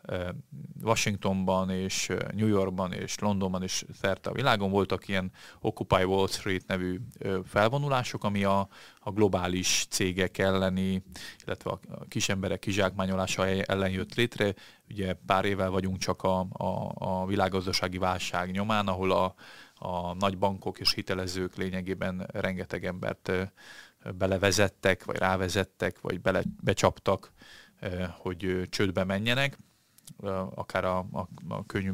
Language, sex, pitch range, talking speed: Hungarian, male, 95-105 Hz, 125 wpm